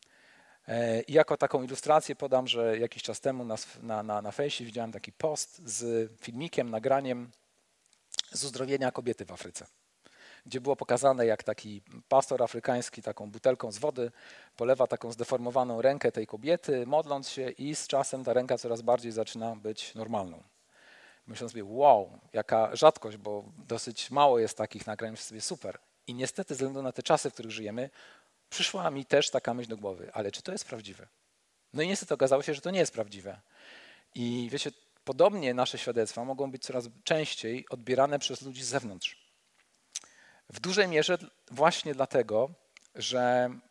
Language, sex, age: Polish, male, 40-59